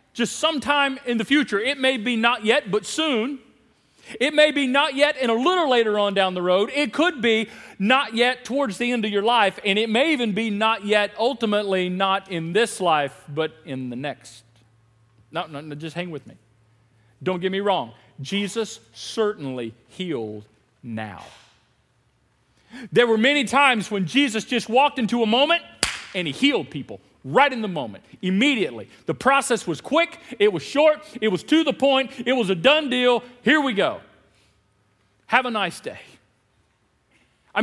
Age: 40-59